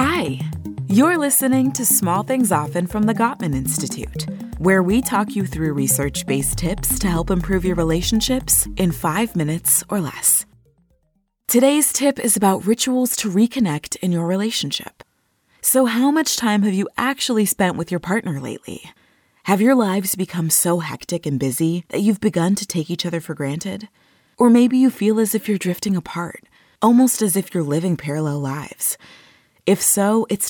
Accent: American